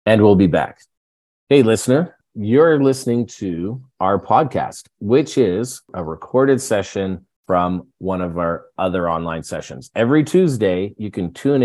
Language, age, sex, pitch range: English, 40-59, male, 95-125 Hz